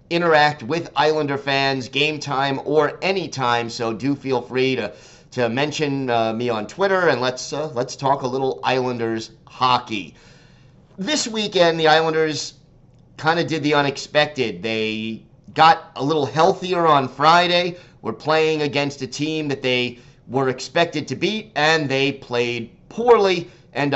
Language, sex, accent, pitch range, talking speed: English, male, American, 125-155 Hz, 150 wpm